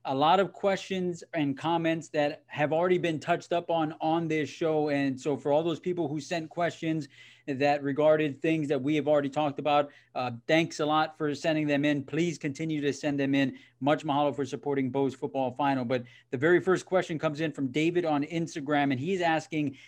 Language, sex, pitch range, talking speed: English, male, 140-175 Hz, 210 wpm